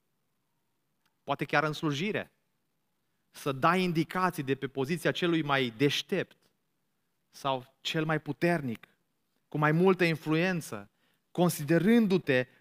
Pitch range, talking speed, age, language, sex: 135-180 Hz, 105 wpm, 30-49, Romanian, male